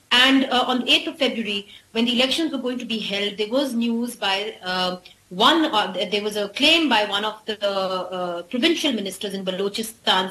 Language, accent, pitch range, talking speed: English, Indian, 210-270 Hz, 210 wpm